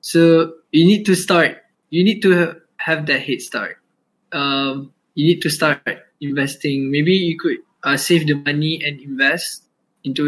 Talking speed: 165 wpm